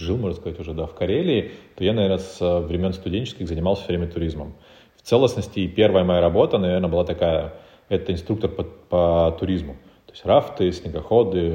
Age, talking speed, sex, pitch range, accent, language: 30-49, 175 wpm, male, 85-95 Hz, native, Russian